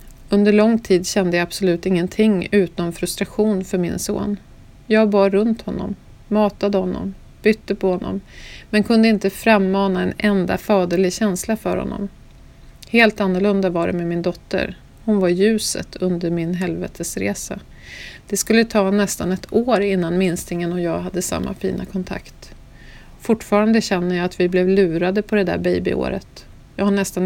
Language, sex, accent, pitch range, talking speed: English, female, Swedish, 180-210 Hz, 160 wpm